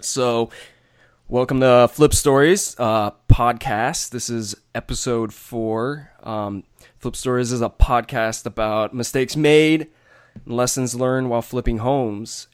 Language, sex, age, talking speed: English, male, 20-39, 125 wpm